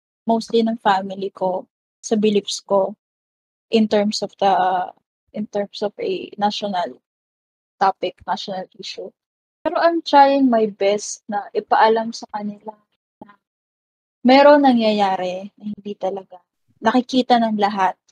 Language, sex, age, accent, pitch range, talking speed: Filipino, female, 20-39, native, 205-255 Hz, 125 wpm